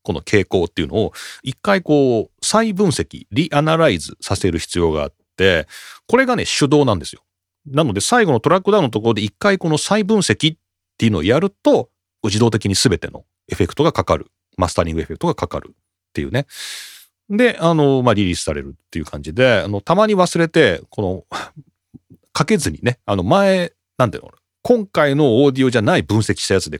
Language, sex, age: Japanese, male, 40-59